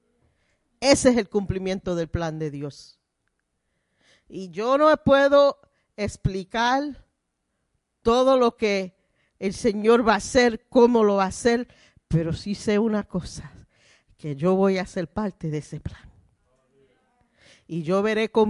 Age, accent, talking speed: 40-59, American, 145 wpm